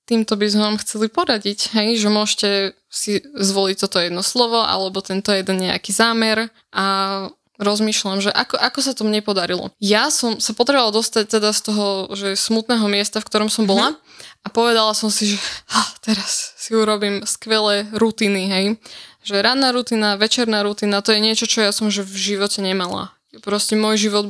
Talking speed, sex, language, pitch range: 180 wpm, female, Slovak, 200-220 Hz